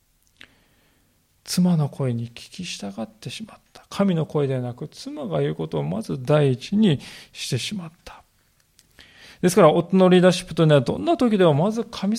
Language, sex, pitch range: Japanese, male, 130-185 Hz